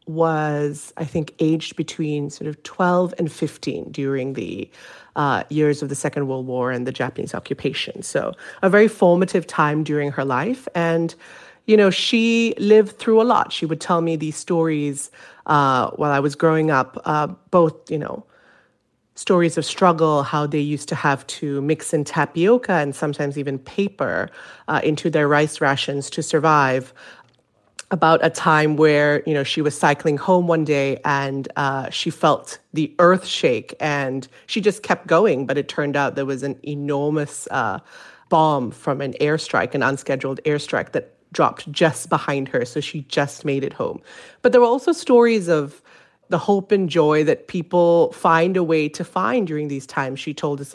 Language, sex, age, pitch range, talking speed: English, female, 30-49, 145-170 Hz, 180 wpm